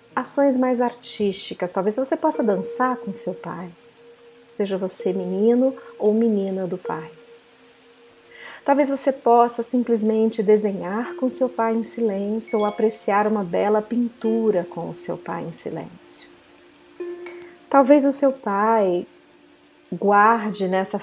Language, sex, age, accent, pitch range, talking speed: Portuguese, female, 40-59, Brazilian, 190-250 Hz, 125 wpm